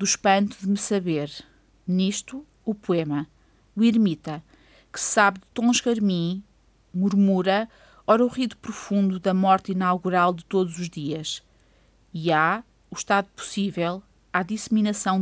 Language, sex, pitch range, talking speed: Portuguese, female, 180-220 Hz, 135 wpm